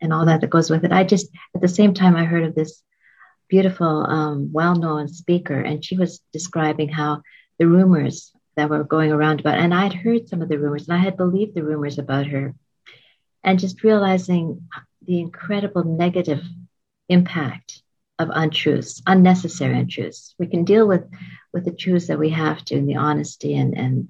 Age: 50-69